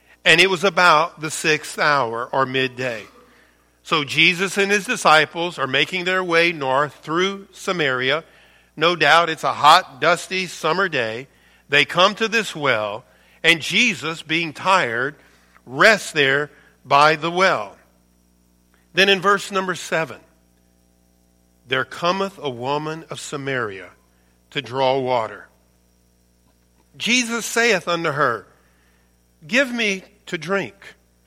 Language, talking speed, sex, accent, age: English, 125 wpm, male, American, 50-69